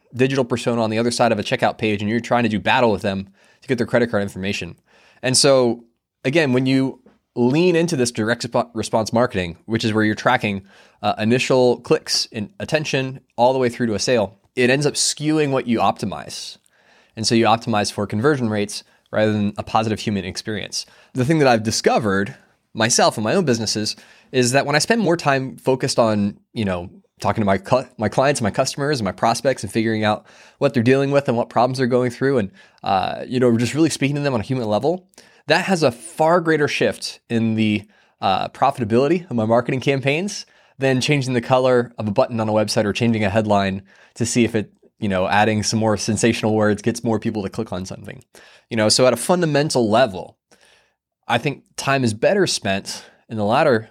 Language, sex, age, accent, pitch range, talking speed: English, male, 20-39, American, 110-135 Hz, 215 wpm